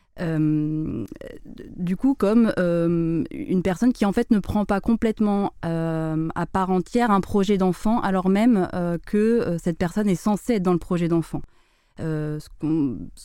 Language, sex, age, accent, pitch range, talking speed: French, female, 20-39, French, 170-210 Hz, 170 wpm